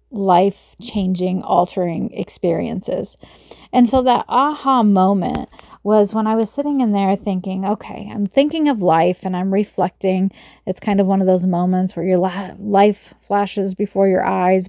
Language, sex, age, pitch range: English, female, 30-49, 185-220 Hz